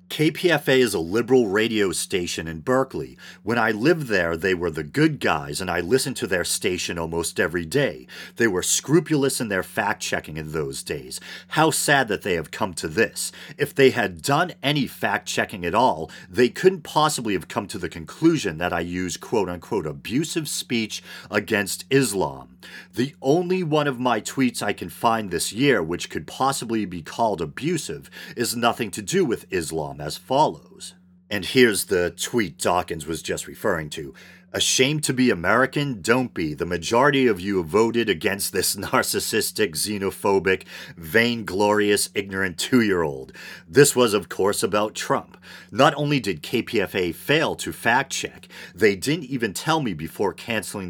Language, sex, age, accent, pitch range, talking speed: English, male, 40-59, American, 90-135 Hz, 165 wpm